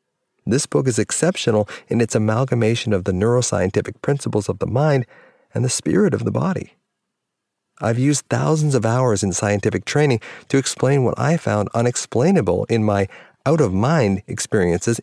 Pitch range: 100-130 Hz